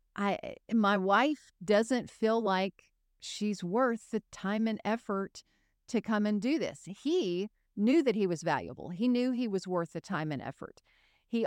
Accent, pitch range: American, 175-225 Hz